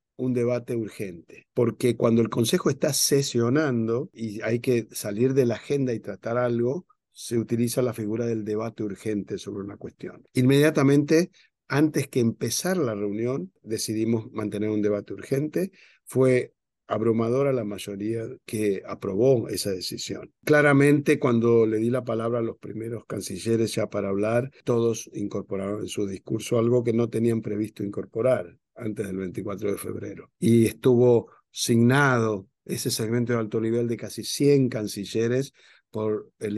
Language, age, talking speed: Spanish, 50-69, 150 wpm